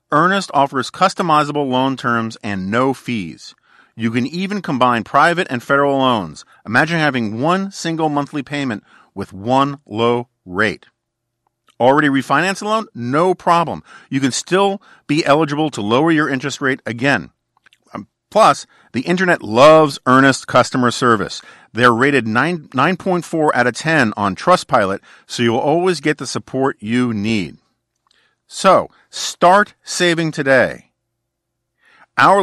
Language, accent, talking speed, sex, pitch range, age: English, American, 130 wpm, male, 120-165 Hz, 50-69